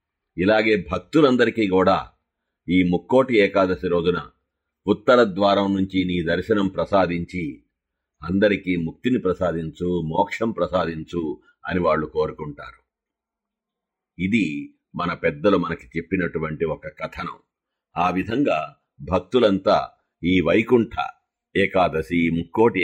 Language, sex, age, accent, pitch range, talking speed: Telugu, male, 50-69, native, 85-110 Hz, 90 wpm